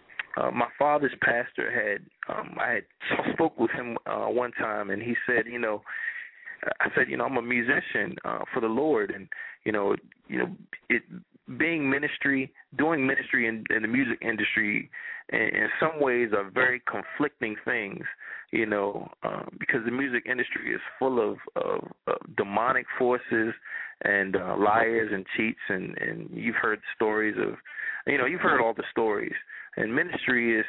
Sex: male